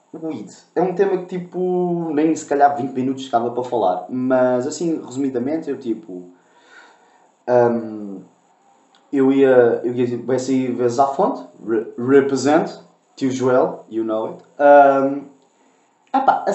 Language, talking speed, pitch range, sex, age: Portuguese, 140 wpm, 125-190 Hz, male, 20-39